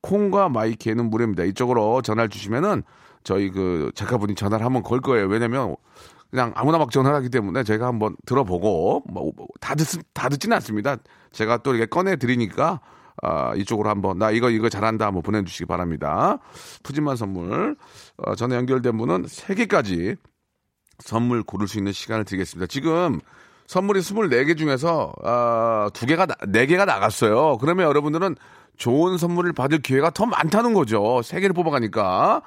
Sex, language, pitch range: male, Korean, 105-155 Hz